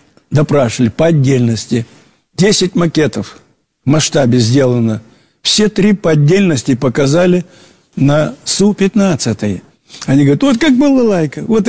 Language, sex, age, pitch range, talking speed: Russian, male, 60-79, 125-180 Hz, 110 wpm